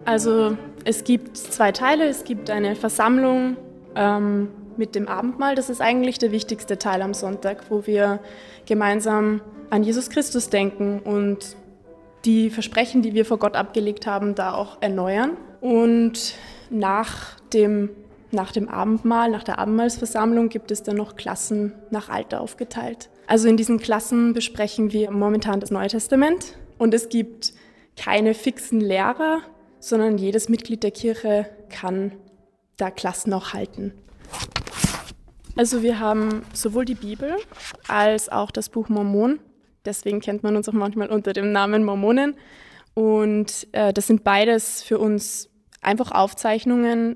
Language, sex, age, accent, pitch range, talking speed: German, female, 20-39, German, 200-230 Hz, 145 wpm